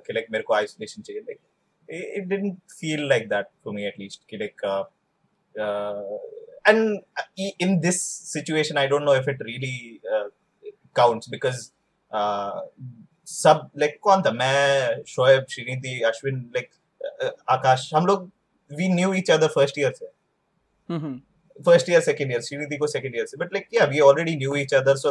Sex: male